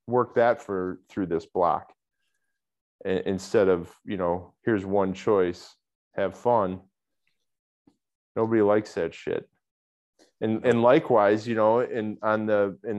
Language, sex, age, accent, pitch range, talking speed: English, male, 20-39, American, 95-115 Hz, 130 wpm